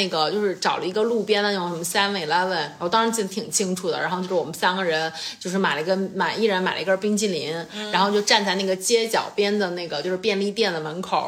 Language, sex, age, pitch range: Chinese, female, 30-49, 180-230 Hz